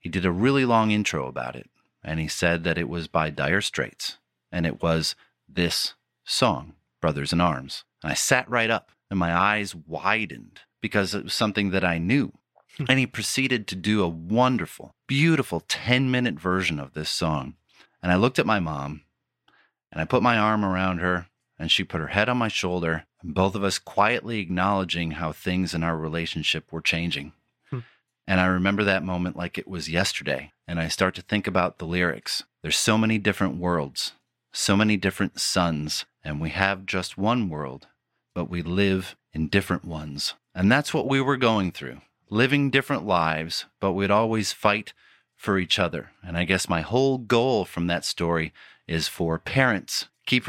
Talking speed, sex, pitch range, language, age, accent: 185 wpm, male, 85-105 Hz, English, 30-49, American